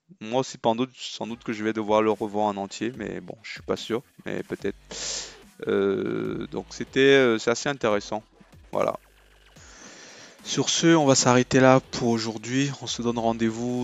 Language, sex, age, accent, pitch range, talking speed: French, male, 20-39, French, 105-120 Hz, 170 wpm